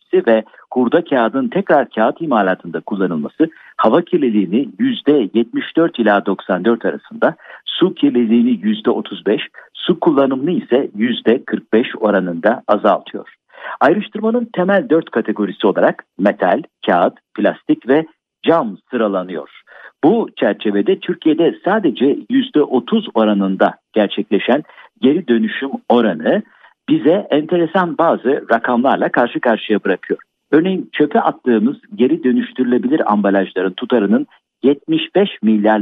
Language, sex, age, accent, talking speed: Turkish, male, 50-69, native, 100 wpm